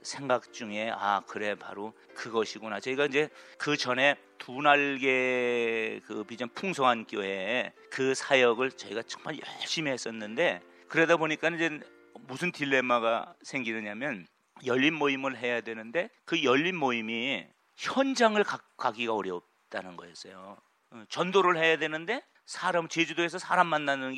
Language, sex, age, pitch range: Korean, male, 40-59, 105-155 Hz